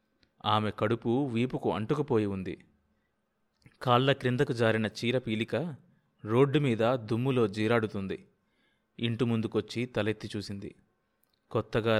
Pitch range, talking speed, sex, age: 105-130 Hz, 90 wpm, male, 30-49